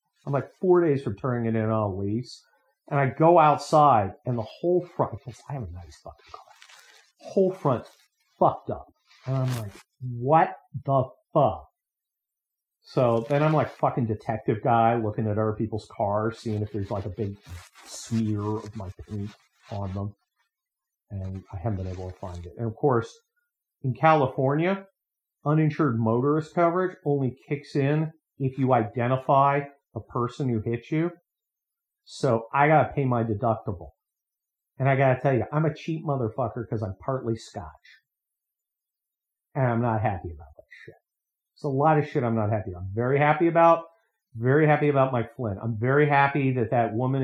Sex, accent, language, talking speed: male, American, English, 175 wpm